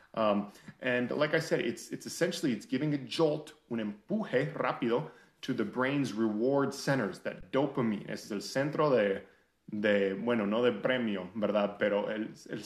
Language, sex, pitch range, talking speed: English, male, 105-140 Hz, 165 wpm